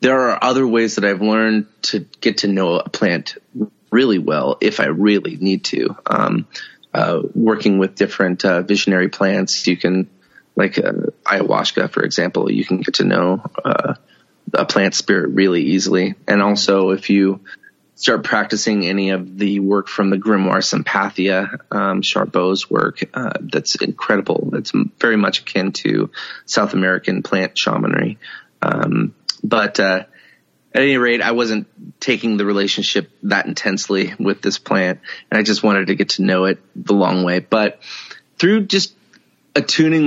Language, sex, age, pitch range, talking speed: English, male, 20-39, 95-110 Hz, 160 wpm